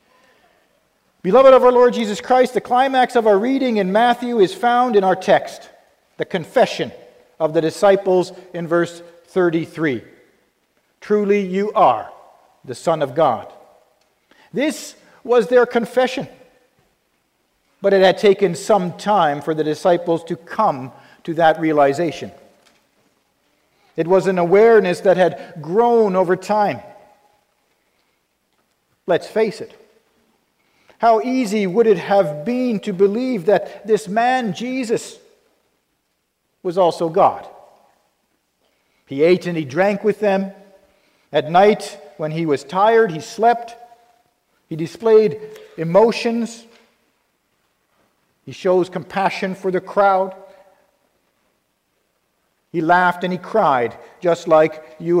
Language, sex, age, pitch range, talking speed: English, male, 50-69, 175-230 Hz, 120 wpm